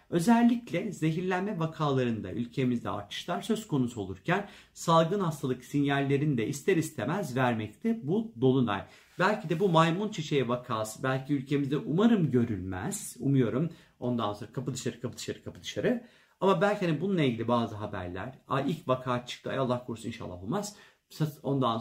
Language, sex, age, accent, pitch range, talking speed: Turkish, male, 50-69, native, 125-195 Hz, 145 wpm